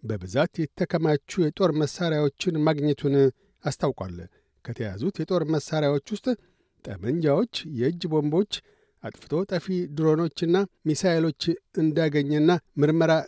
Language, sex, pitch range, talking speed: Amharic, male, 145-175 Hz, 85 wpm